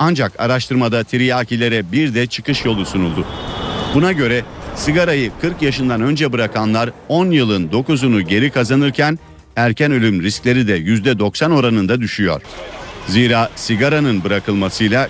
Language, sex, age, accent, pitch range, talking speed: Turkish, male, 50-69, native, 105-135 Hz, 120 wpm